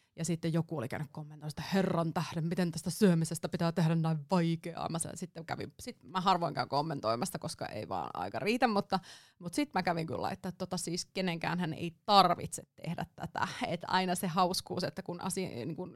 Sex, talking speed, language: female, 195 wpm, Finnish